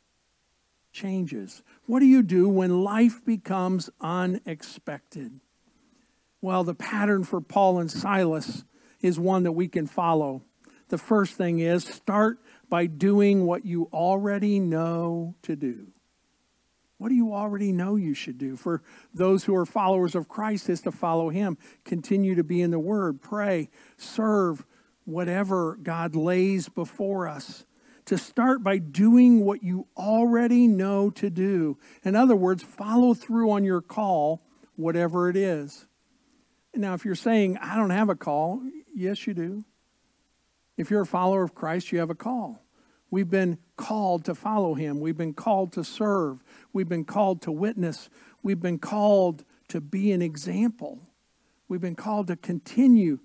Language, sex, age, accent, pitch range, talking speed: English, male, 50-69, American, 175-220 Hz, 155 wpm